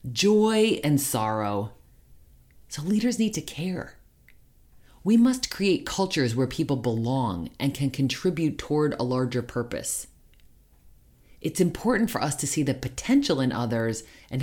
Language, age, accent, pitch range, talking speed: English, 30-49, American, 120-165 Hz, 135 wpm